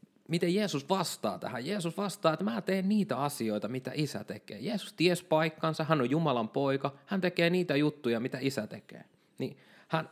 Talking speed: 180 wpm